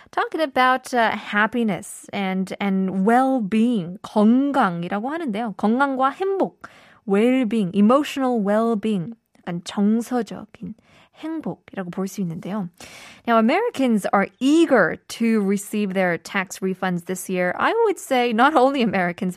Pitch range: 200-275 Hz